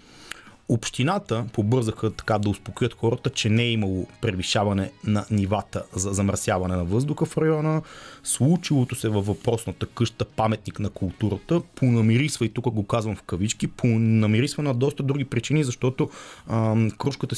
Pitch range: 105-130 Hz